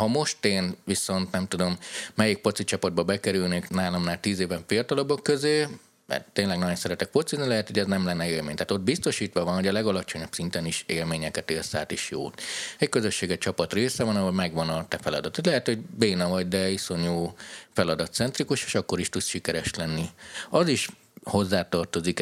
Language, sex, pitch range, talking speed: Hungarian, male, 85-110 Hz, 185 wpm